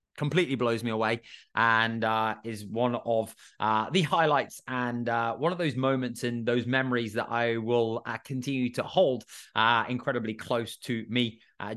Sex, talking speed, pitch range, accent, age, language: male, 175 wpm, 115-135 Hz, British, 20-39, English